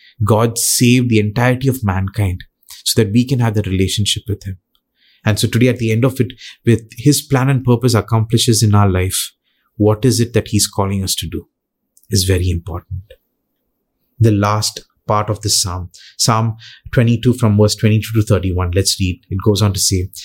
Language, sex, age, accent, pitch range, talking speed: English, male, 30-49, Indian, 105-125 Hz, 190 wpm